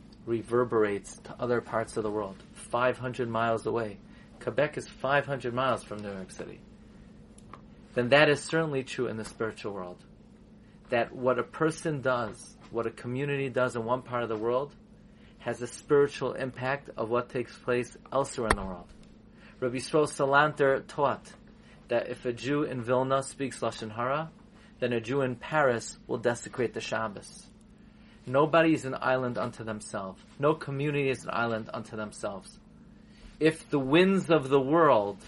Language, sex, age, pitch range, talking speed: English, male, 40-59, 125-170 Hz, 160 wpm